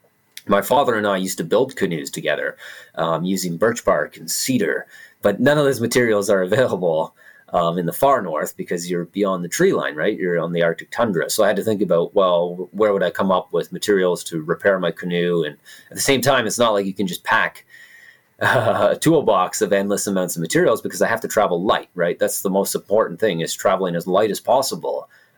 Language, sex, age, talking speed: English, male, 30-49, 220 wpm